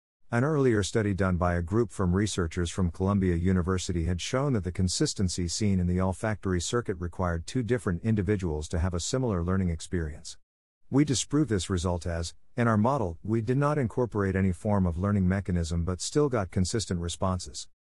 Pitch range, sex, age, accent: 90-110 Hz, male, 50-69, American